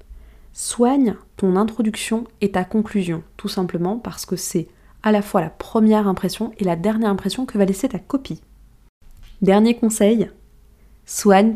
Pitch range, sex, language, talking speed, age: 180-215 Hz, female, French, 150 wpm, 20-39